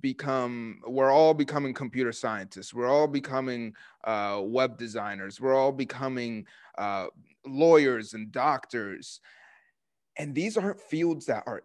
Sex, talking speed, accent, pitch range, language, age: male, 130 wpm, American, 120-140 Hz, English, 20-39